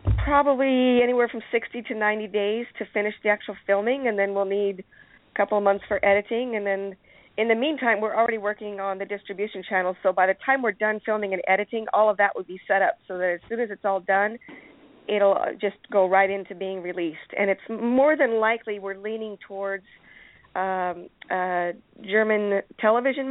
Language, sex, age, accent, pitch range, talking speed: English, female, 40-59, American, 190-225 Hz, 200 wpm